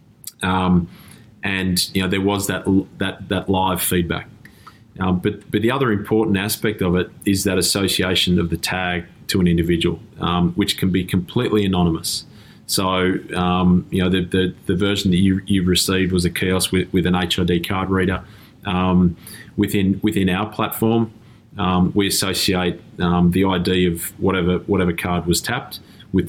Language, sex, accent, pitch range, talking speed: English, male, Australian, 90-100 Hz, 170 wpm